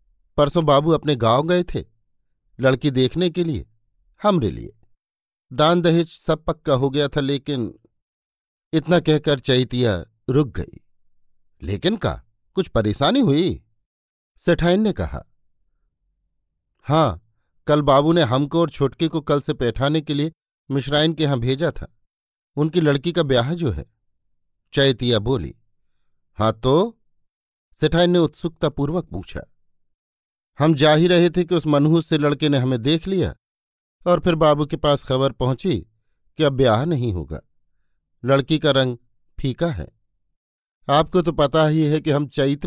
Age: 50-69